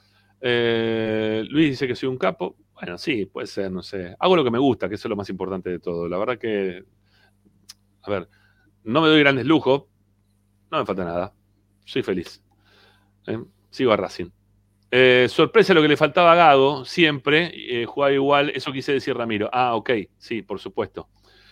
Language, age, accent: Spanish, 40-59, Argentinian